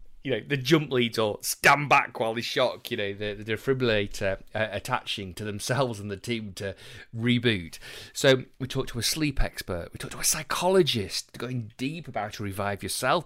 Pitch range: 100-130 Hz